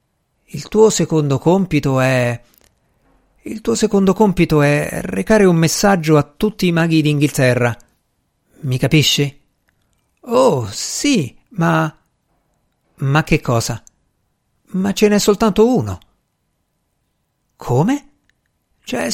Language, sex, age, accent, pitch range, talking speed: Italian, male, 50-69, native, 120-185 Hz, 105 wpm